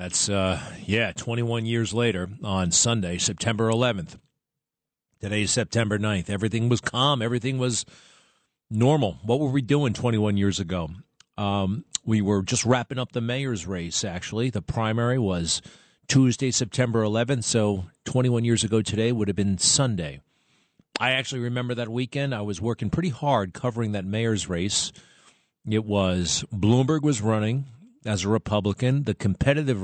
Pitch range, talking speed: 95-120 Hz, 155 wpm